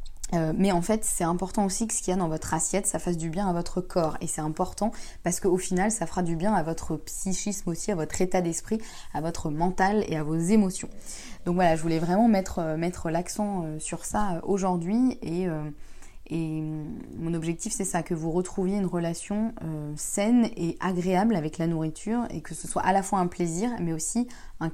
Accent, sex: French, female